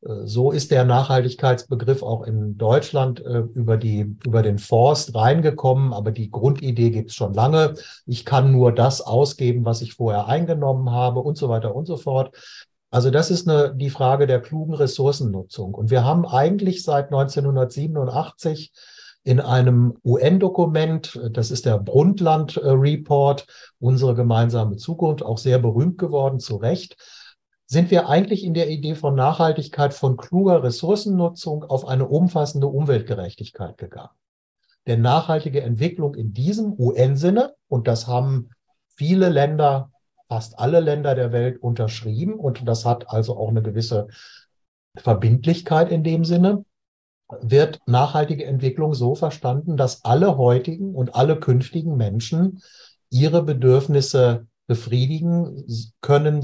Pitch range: 120-155 Hz